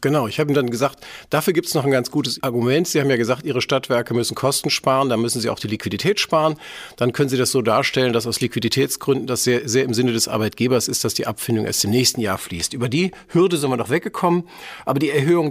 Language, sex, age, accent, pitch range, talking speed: German, male, 50-69, German, 125-155 Hz, 250 wpm